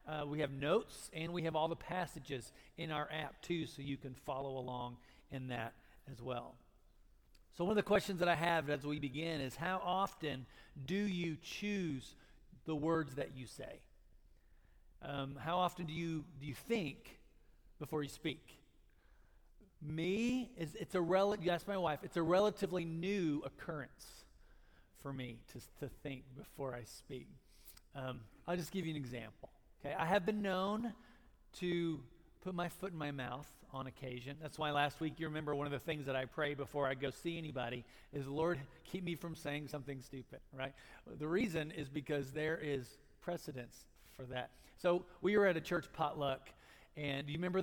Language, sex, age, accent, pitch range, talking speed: English, male, 40-59, American, 140-175 Hz, 185 wpm